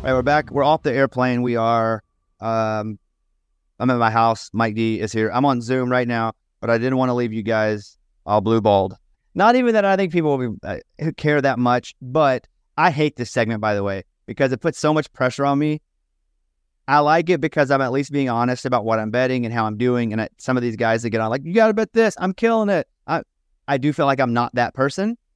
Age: 30-49